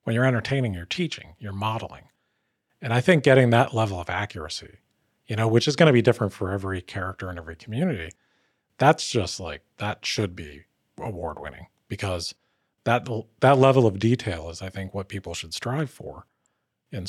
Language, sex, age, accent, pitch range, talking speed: English, male, 40-59, American, 90-120 Hz, 180 wpm